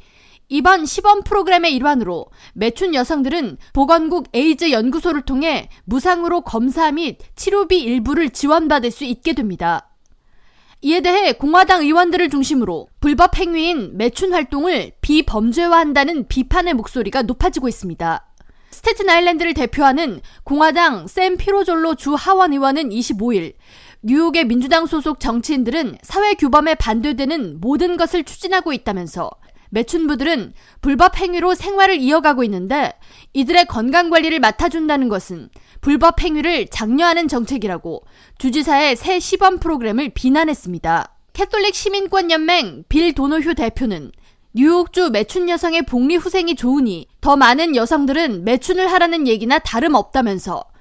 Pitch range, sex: 250-345 Hz, female